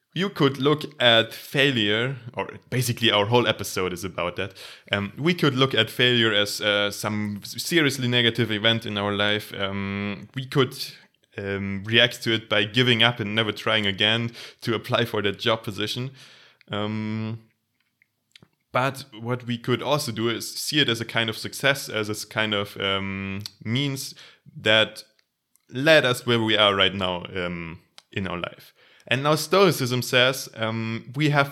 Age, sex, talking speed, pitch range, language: 20-39, male, 170 wpm, 105-125 Hz, English